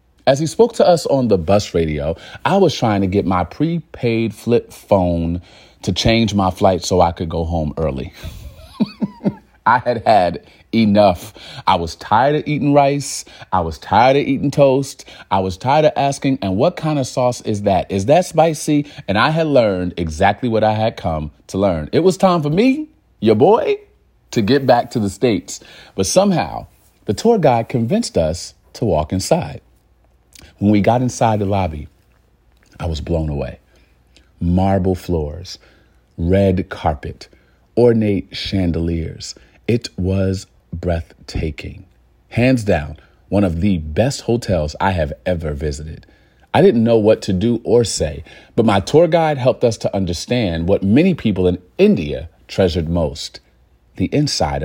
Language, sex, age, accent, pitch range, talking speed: English, male, 40-59, American, 85-125 Hz, 160 wpm